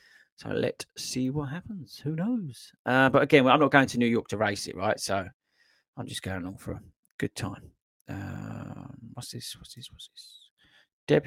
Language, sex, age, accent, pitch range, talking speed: English, male, 30-49, British, 115-155 Hz, 195 wpm